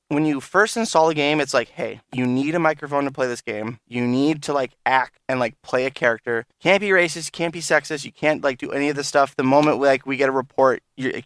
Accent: American